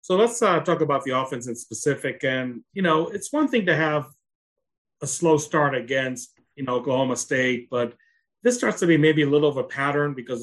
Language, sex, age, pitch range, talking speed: English, male, 40-59, 130-155 Hz, 215 wpm